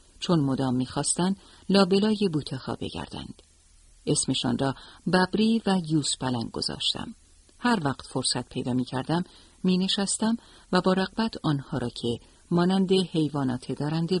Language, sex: Persian, female